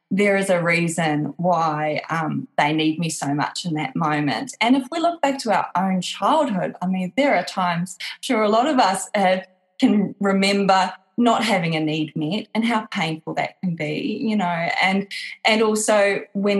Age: 20-39